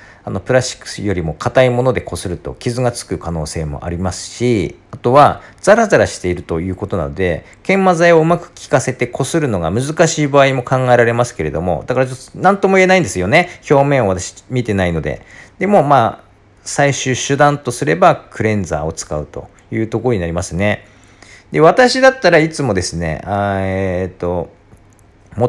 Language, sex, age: Japanese, male, 40-59